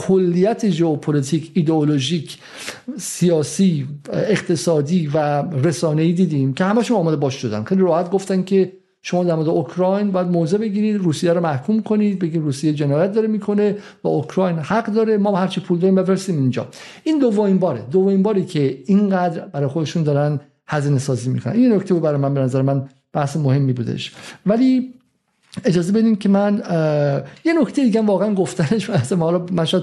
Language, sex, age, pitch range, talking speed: Persian, male, 50-69, 150-205 Hz, 165 wpm